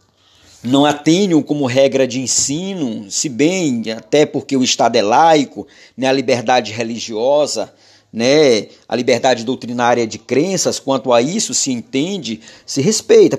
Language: Portuguese